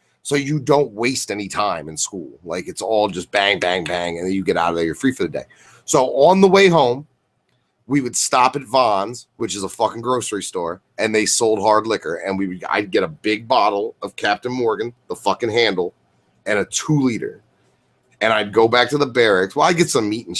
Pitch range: 95-130 Hz